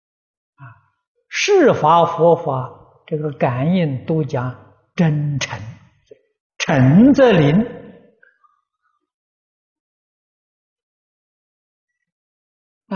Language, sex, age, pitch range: Chinese, male, 60-79, 150-240 Hz